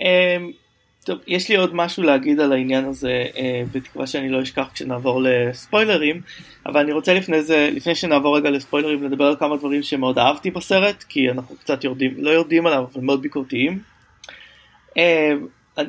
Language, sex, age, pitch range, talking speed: Hebrew, male, 20-39, 135-165 Hz, 170 wpm